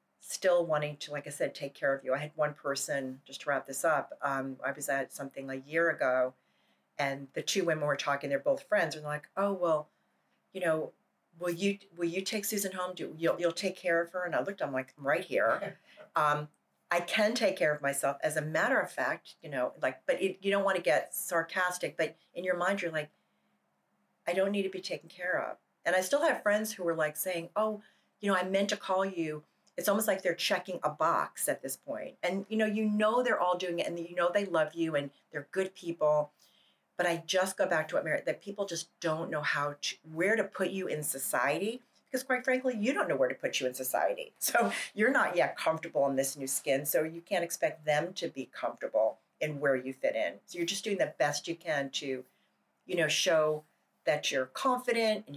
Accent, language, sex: American, English, female